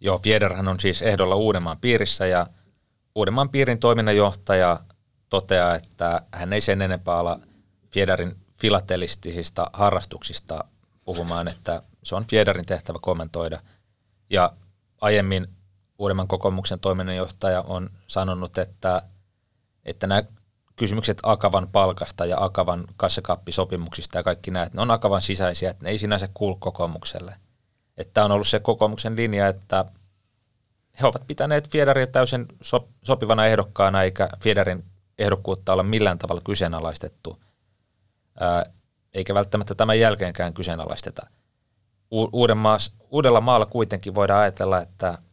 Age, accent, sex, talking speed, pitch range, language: 30-49, native, male, 120 wpm, 90-105 Hz, Finnish